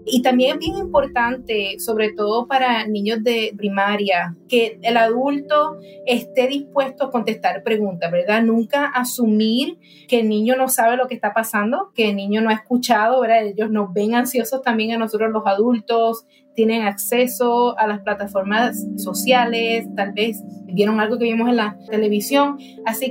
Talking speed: 165 wpm